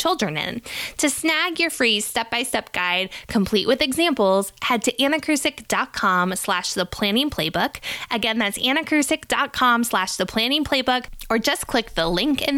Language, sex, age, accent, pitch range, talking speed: English, female, 10-29, American, 180-245 Hz, 150 wpm